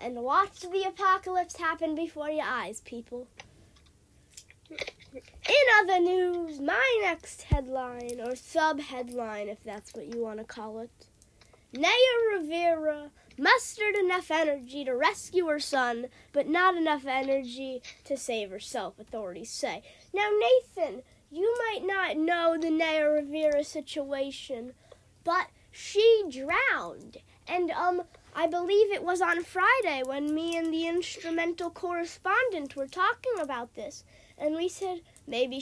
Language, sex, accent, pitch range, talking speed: English, female, American, 265-380 Hz, 130 wpm